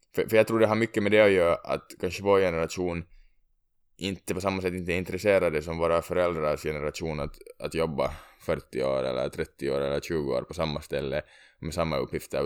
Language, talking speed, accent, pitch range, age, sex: Swedish, 200 wpm, Finnish, 80-105 Hz, 20-39, male